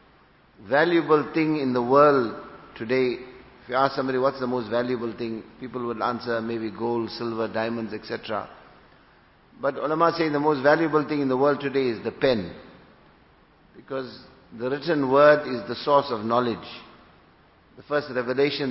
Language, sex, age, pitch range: English, male, 50-69, 120-145 Hz